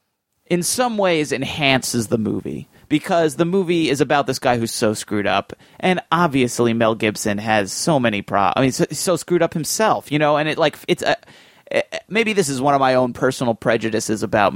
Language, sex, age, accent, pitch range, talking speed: English, male, 30-49, American, 120-165 Hz, 220 wpm